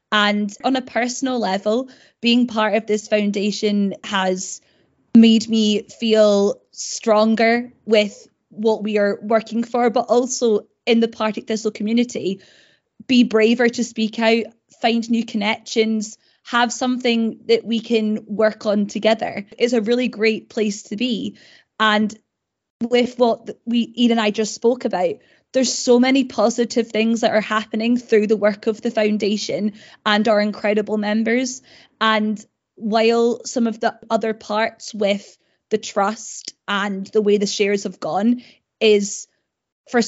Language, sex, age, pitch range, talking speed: English, female, 20-39, 210-235 Hz, 145 wpm